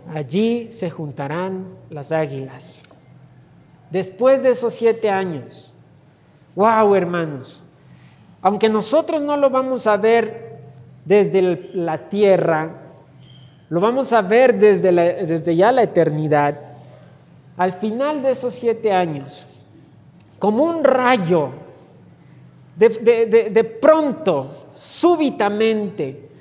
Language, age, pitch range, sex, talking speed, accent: Spanish, 40-59, 150-225 Hz, male, 105 wpm, Mexican